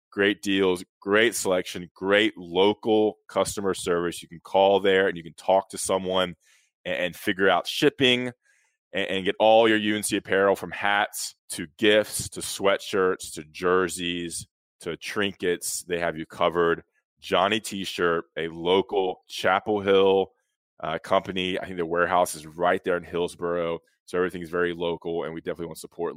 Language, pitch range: English, 85-110 Hz